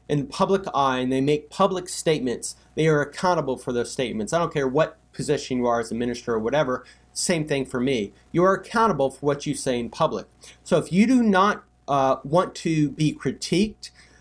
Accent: American